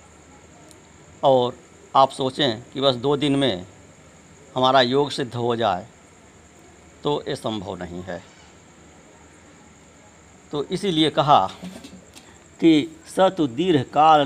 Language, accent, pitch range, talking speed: Hindi, native, 120-185 Hz, 100 wpm